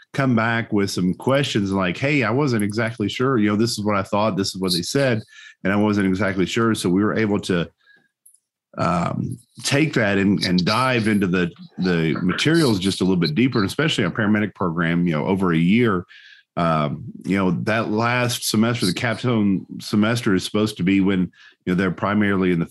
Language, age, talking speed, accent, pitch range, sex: English, 40-59, 205 wpm, American, 95-120 Hz, male